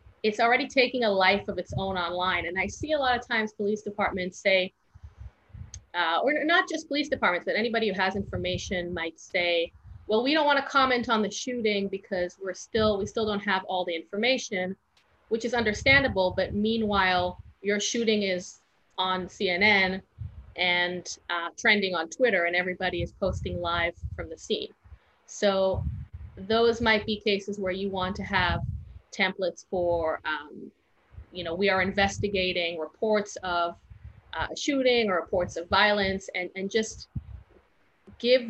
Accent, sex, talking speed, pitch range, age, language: American, female, 165 wpm, 185-225 Hz, 30-49, English